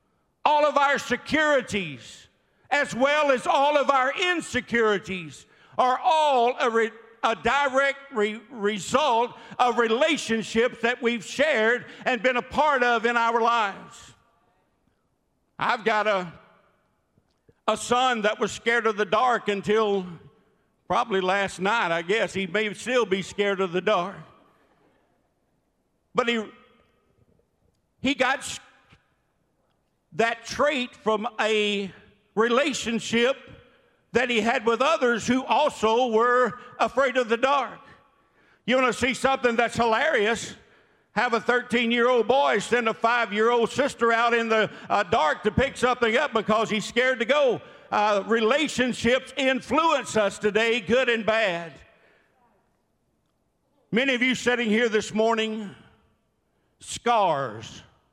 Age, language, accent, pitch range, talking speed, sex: 60-79, English, American, 215-255 Hz, 130 wpm, male